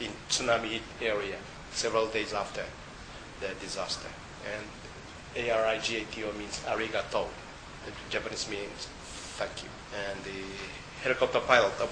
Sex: male